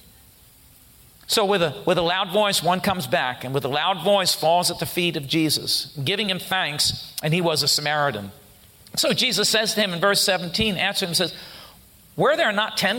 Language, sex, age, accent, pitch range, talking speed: English, male, 50-69, American, 145-180 Hz, 205 wpm